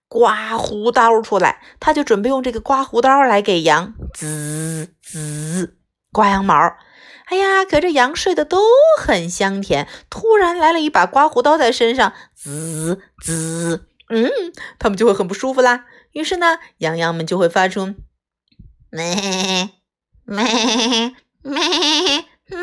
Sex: female